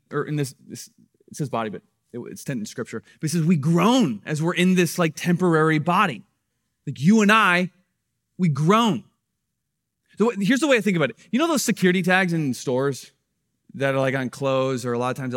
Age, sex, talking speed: 20-39, male, 220 wpm